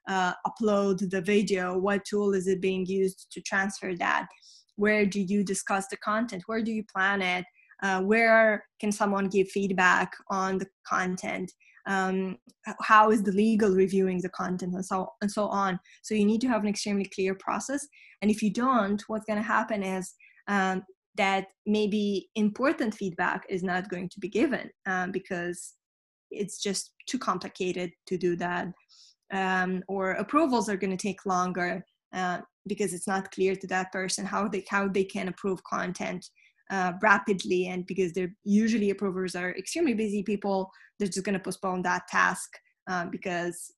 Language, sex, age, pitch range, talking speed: English, female, 20-39, 185-210 Hz, 170 wpm